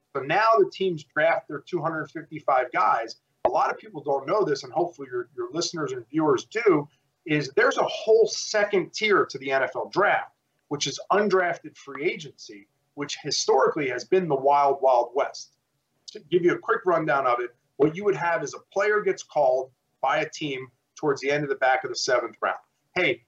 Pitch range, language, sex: 140-190 Hz, English, male